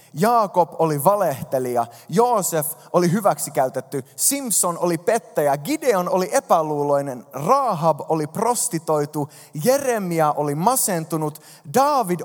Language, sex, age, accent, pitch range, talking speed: Finnish, male, 20-39, native, 145-220 Hz, 95 wpm